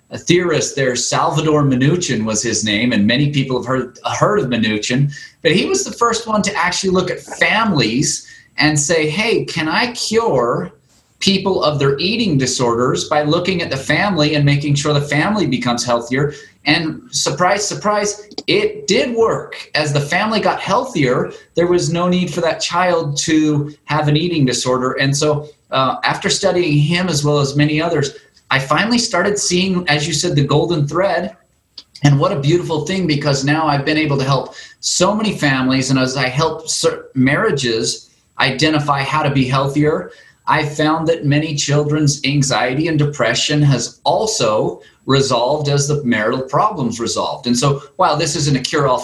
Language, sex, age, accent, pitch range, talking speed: English, male, 30-49, American, 135-170 Hz, 175 wpm